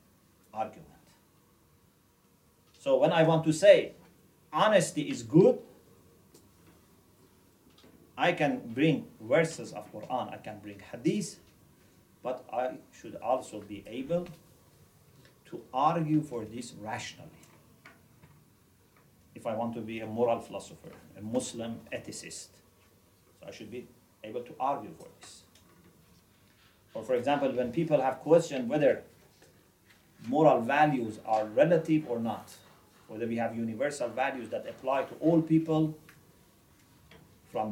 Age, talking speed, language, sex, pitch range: 50-69, 120 wpm, English, male, 110-155 Hz